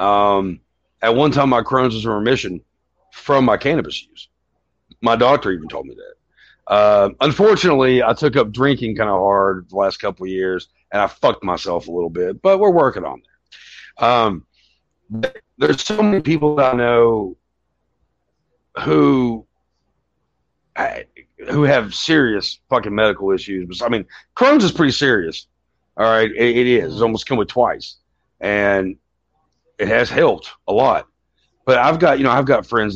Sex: male